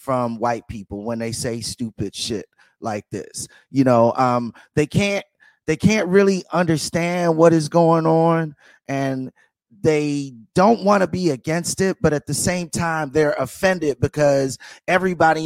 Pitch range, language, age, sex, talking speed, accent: 130-170 Hz, English, 30-49, male, 155 wpm, American